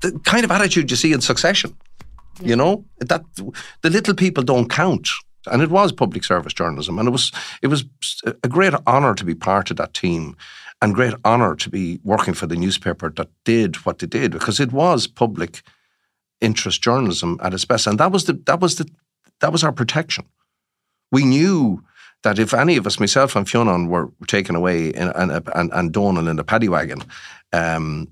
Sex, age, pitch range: male, 50-69, 90-130 Hz